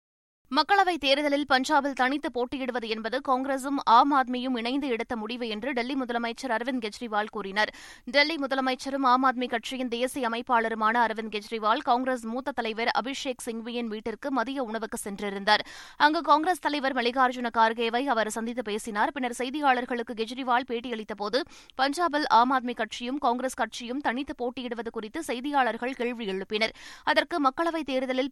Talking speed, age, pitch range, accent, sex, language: 125 wpm, 20-39, 225-270 Hz, native, female, Tamil